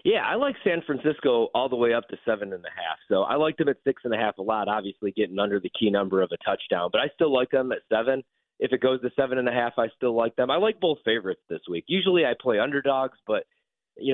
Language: English